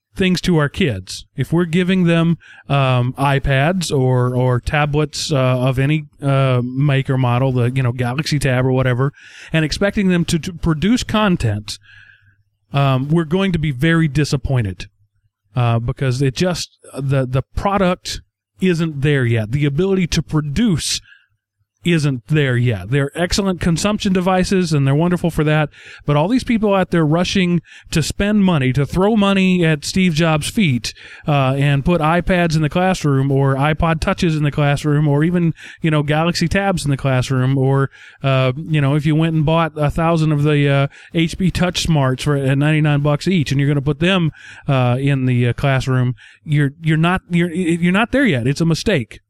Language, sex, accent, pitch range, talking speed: English, male, American, 130-170 Hz, 185 wpm